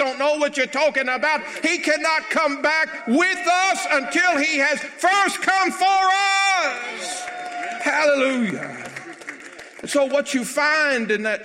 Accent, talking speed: American, 135 wpm